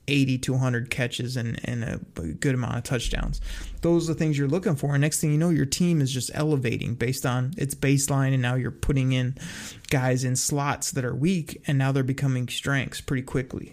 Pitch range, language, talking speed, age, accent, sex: 130-150 Hz, English, 220 wpm, 30-49, American, male